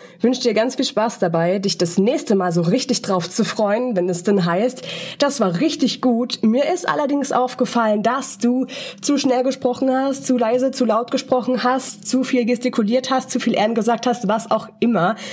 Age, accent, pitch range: 20-39, German, 200-250 Hz